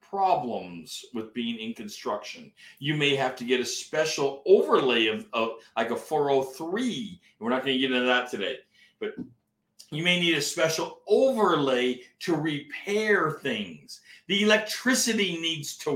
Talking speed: 150 wpm